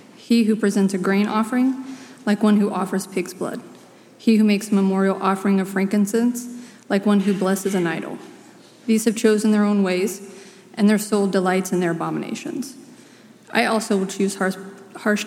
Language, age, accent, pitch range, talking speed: English, 30-49, American, 190-215 Hz, 175 wpm